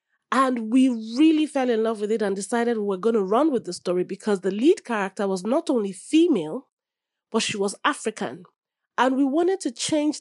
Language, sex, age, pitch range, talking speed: English, female, 30-49, 200-265 Hz, 205 wpm